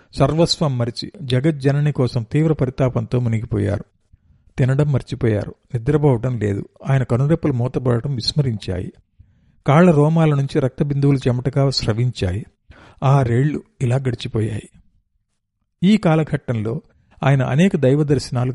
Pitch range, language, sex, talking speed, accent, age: 120-155 Hz, Telugu, male, 100 wpm, native, 50-69